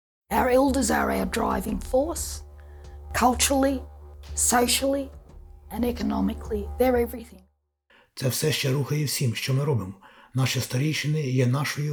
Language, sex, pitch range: Ukrainian, male, 120-145 Hz